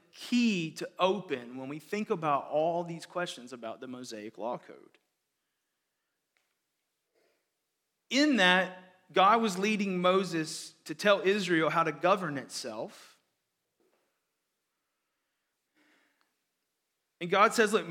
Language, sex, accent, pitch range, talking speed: English, male, American, 180-245 Hz, 105 wpm